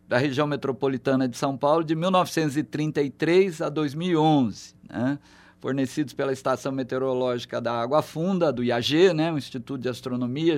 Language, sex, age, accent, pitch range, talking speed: Portuguese, male, 50-69, Brazilian, 135-185 Hz, 140 wpm